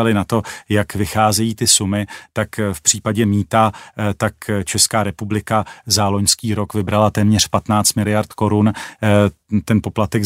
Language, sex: Czech, male